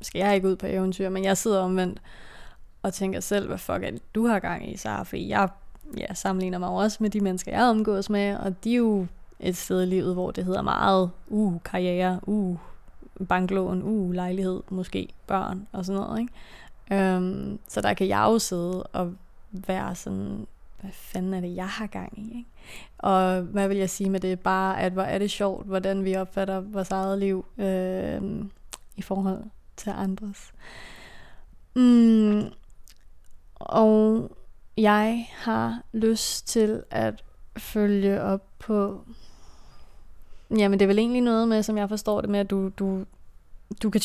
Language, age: Danish, 20-39